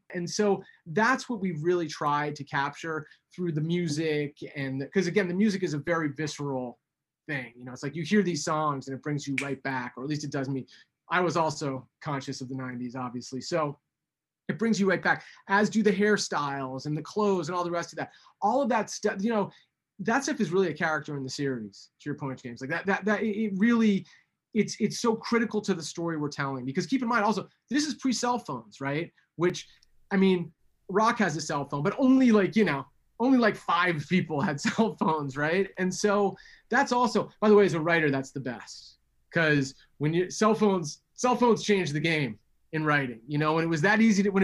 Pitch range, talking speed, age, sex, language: 145-200 Hz, 230 wpm, 30-49, male, English